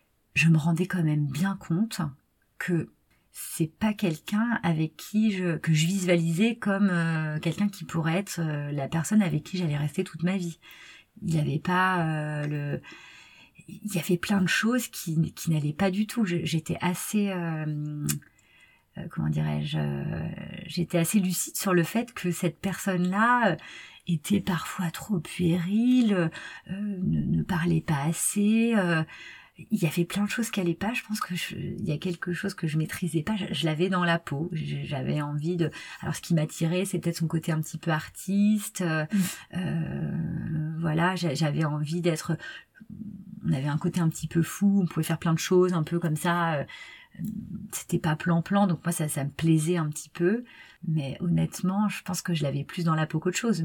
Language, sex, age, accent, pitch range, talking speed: French, female, 30-49, French, 160-190 Hz, 190 wpm